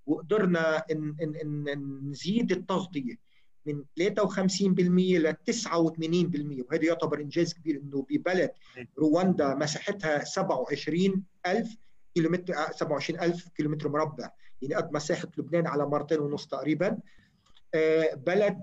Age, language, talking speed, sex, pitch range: 50-69, Arabic, 100 wpm, male, 150-180 Hz